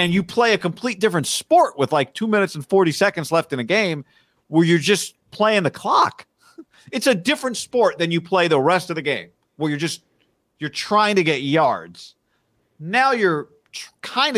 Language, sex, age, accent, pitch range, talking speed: English, male, 40-59, American, 130-205 Hz, 195 wpm